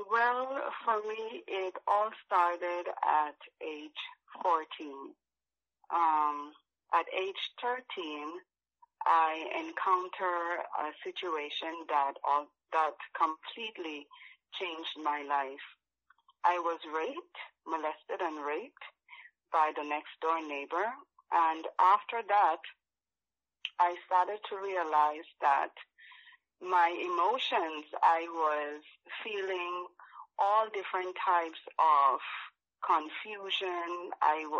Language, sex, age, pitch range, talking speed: English, female, 30-49, 155-195 Hz, 95 wpm